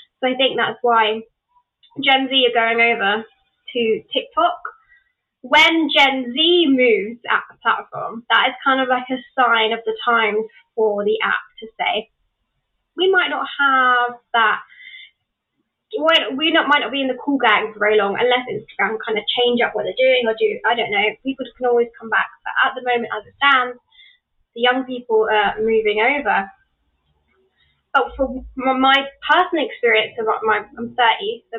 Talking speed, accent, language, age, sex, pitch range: 175 wpm, British, English, 20-39, female, 235-295 Hz